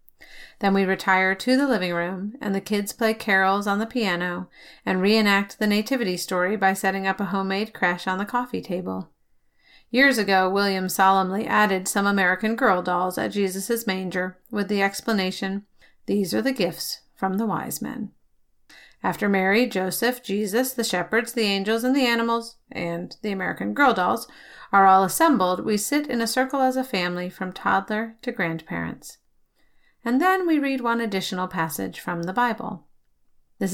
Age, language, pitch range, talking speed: 40-59, English, 185-230 Hz, 170 wpm